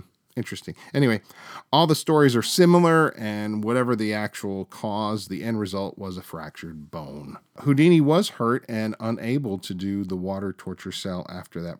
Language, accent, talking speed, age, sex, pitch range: English, American, 165 wpm, 40-59, male, 100-130 Hz